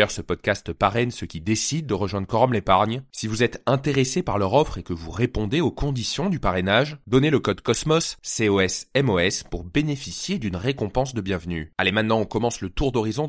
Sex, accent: male, French